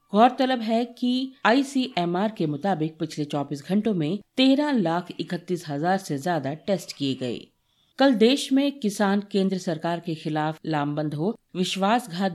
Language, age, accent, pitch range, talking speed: Hindi, 50-69, native, 160-210 Hz, 145 wpm